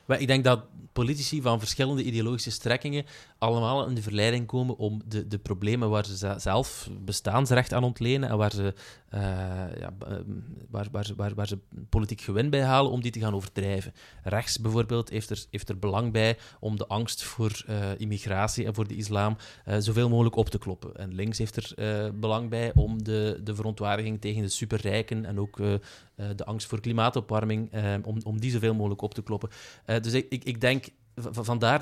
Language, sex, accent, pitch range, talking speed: Dutch, male, Dutch, 105-125 Hz, 190 wpm